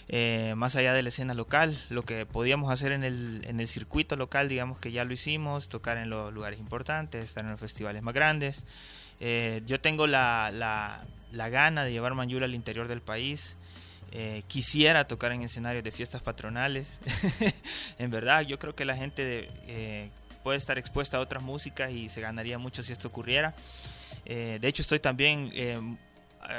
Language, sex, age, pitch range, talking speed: Spanish, male, 20-39, 110-130 Hz, 185 wpm